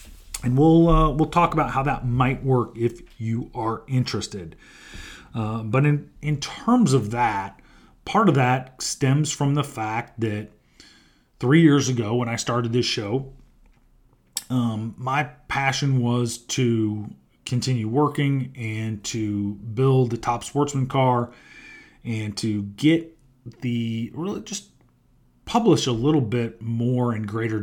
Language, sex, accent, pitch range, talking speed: English, male, American, 110-130 Hz, 140 wpm